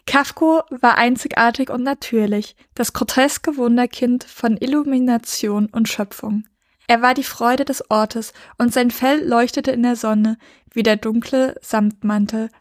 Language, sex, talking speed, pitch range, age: German, female, 140 wpm, 215-250 Hz, 20-39